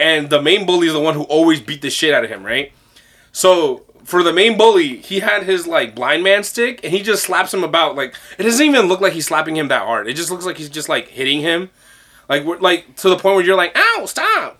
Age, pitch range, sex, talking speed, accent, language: 20-39, 155-230 Hz, male, 265 wpm, American, English